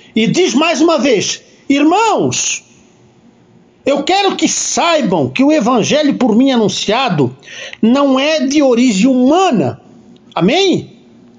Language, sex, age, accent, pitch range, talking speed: Portuguese, male, 60-79, Brazilian, 225-295 Hz, 115 wpm